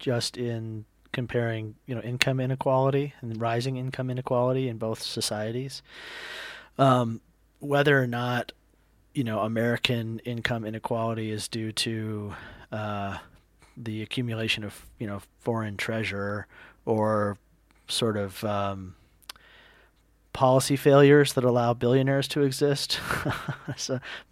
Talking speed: 115 wpm